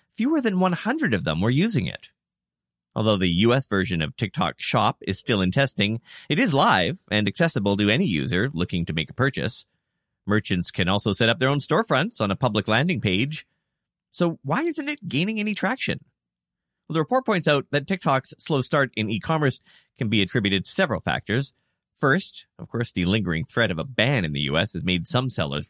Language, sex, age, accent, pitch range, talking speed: English, male, 30-49, American, 95-140 Hz, 195 wpm